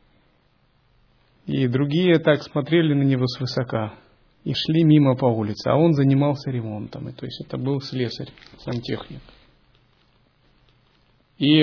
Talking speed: 125 wpm